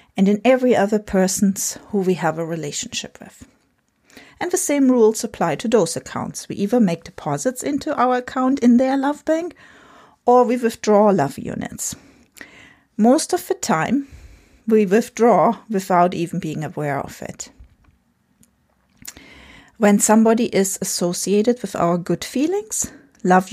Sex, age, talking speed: female, 40-59, 145 wpm